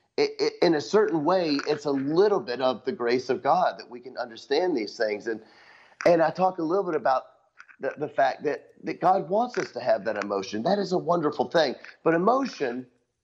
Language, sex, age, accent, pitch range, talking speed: English, male, 40-59, American, 120-160 Hz, 210 wpm